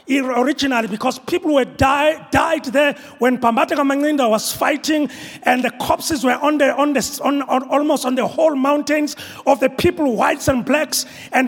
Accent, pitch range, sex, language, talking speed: South African, 260-320 Hz, male, English, 180 wpm